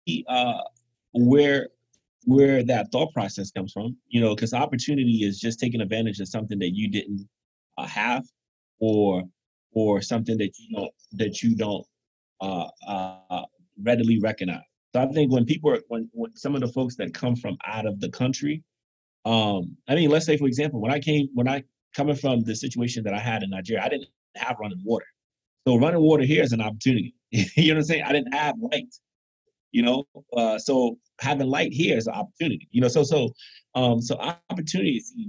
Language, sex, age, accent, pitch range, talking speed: English, male, 30-49, American, 100-135 Hz, 195 wpm